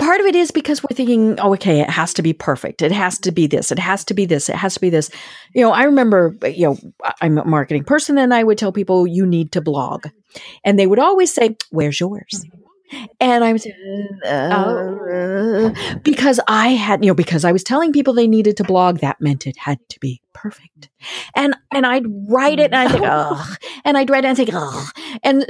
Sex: female